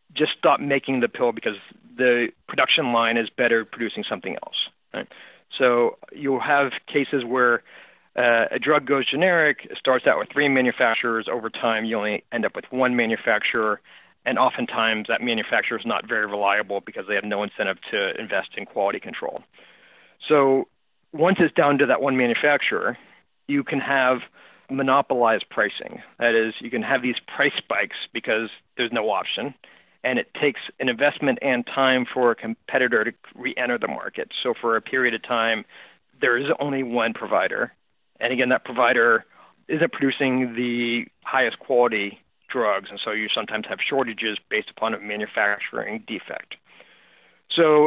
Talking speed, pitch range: 165 wpm, 115-140 Hz